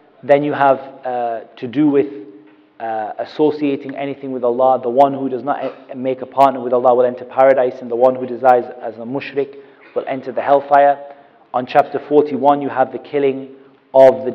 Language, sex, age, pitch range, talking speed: English, male, 30-49, 130-160 Hz, 190 wpm